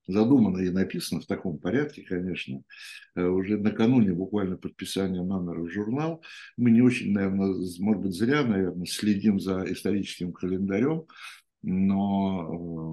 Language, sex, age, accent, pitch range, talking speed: Russian, male, 60-79, native, 90-105 Hz, 125 wpm